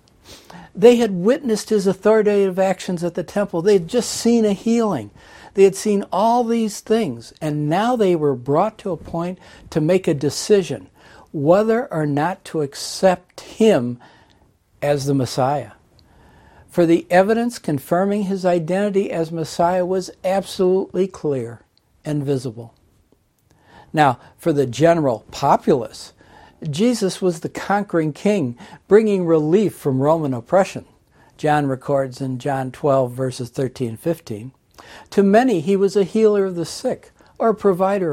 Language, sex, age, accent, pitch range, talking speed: English, male, 60-79, American, 140-195 Hz, 145 wpm